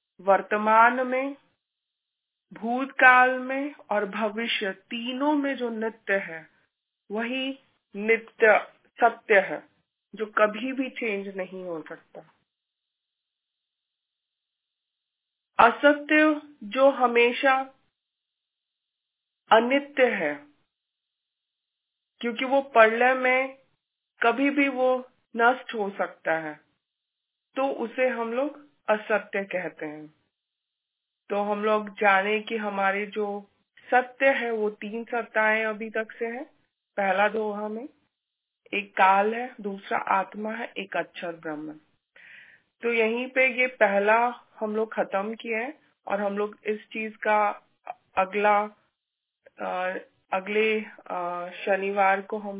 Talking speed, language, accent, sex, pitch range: 110 wpm, Hindi, native, female, 200-250 Hz